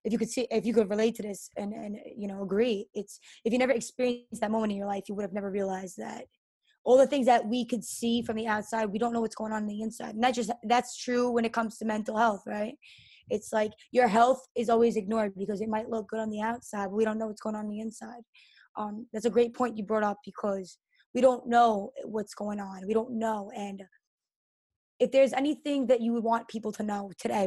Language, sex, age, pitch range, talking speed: English, female, 20-39, 210-240 Hz, 255 wpm